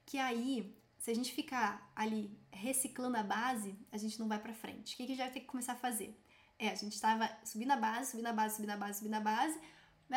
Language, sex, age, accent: Portuguese, female, 10-29, Brazilian